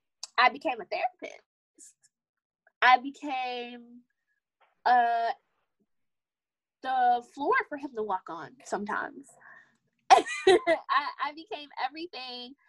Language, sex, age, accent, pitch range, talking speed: English, female, 10-29, American, 215-350 Hz, 90 wpm